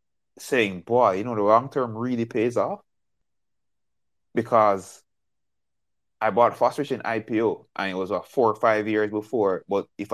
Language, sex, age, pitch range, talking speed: English, male, 20-39, 100-125 Hz, 160 wpm